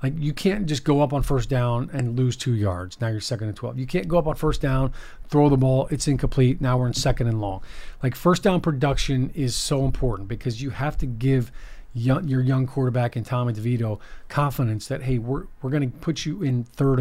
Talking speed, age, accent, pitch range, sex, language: 225 wpm, 40-59, American, 125-145 Hz, male, English